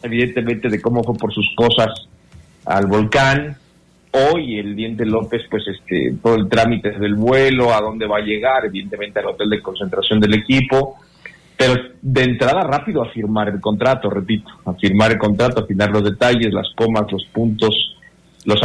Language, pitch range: Spanish, 110-135 Hz